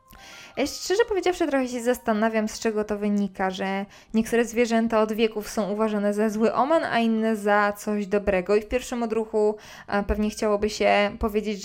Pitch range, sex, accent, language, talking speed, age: 200-230 Hz, female, native, Polish, 170 wpm, 20-39